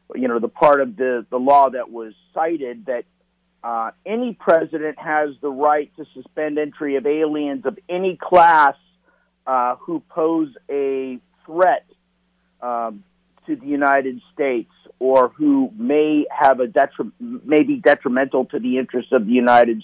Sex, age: male, 50-69